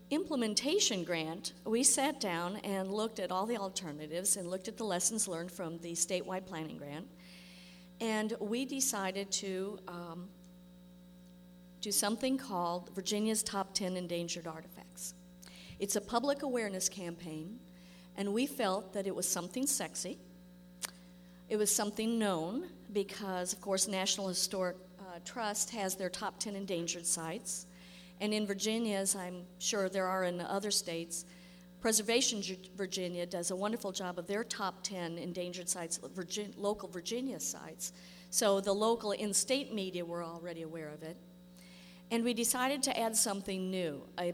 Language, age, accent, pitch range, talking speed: English, 50-69, American, 180-215 Hz, 150 wpm